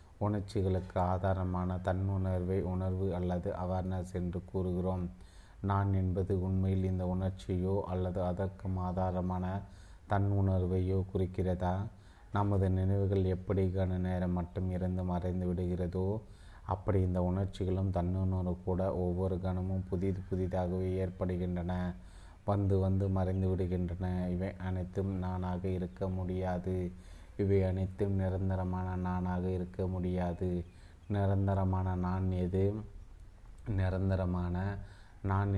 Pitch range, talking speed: 90-95 Hz, 95 wpm